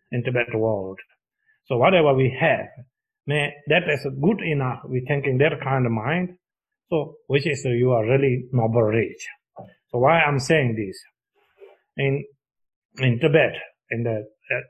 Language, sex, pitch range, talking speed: English, male, 120-155 Hz, 160 wpm